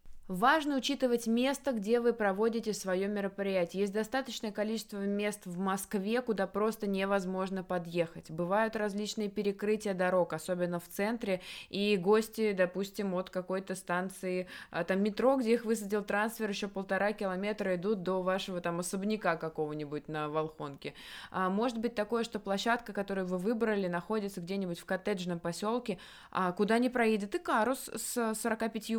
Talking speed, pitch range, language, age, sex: 140 wpm, 185-220 Hz, Russian, 20-39, female